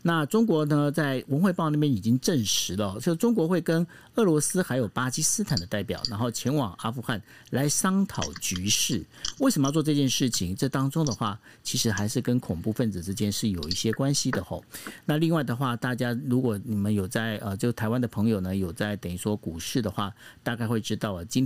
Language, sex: Chinese, male